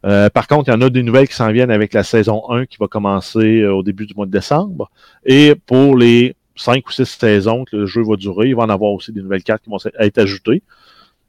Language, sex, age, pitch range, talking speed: French, male, 30-49, 110-135 Hz, 260 wpm